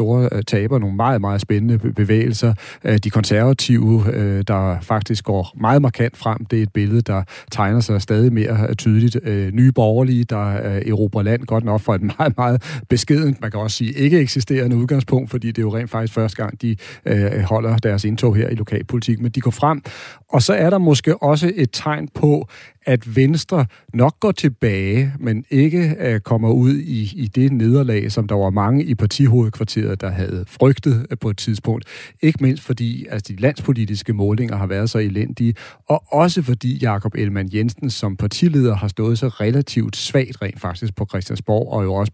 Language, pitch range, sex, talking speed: Danish, 105-130 Hz, male, 180 wpm